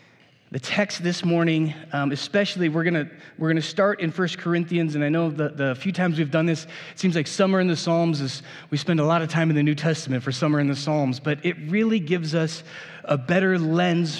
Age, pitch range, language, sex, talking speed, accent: 30-49, 145-180 Hz, English, male, 235 wpm, American